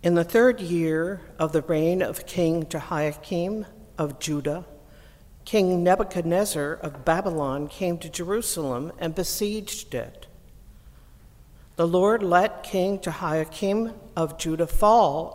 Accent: American